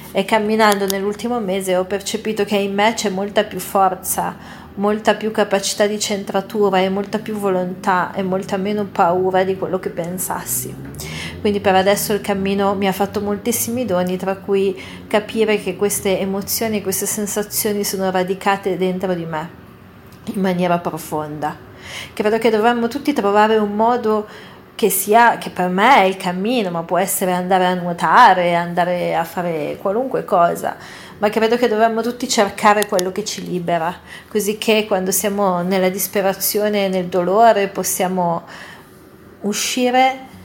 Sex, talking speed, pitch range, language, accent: female, 155 wpm, 185-210 Hz, Italian, native